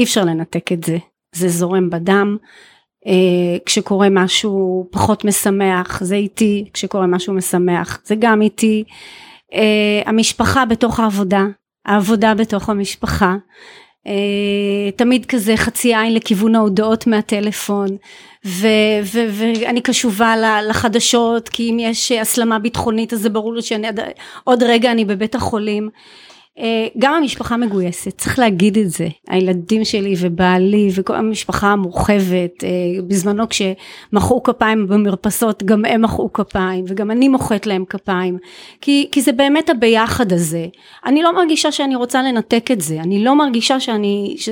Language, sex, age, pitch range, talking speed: Hebrew, female, 30-49, 200-250 Hz, 135 wpm